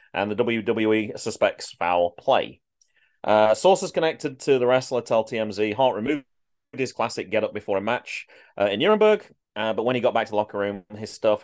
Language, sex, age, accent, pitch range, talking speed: English, male, 30-49, British, 95-135 Hz, 195 wpm